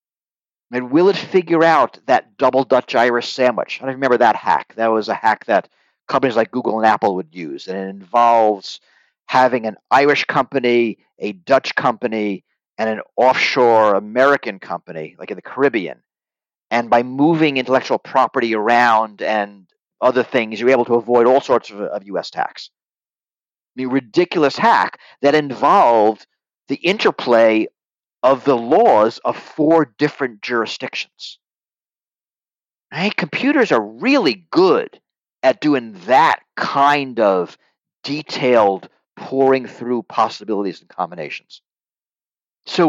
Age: 40-59